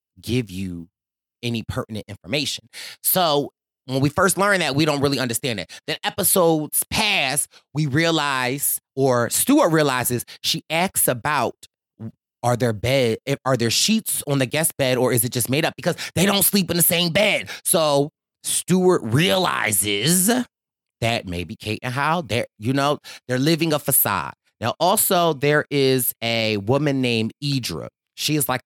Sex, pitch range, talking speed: male, 125-170 Hz, 160 wpm